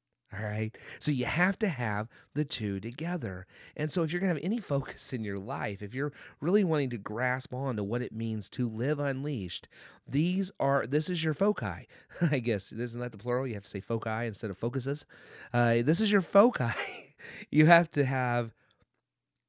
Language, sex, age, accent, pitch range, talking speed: English, male, 30-49, American, 110-145 Hz, 200 wpm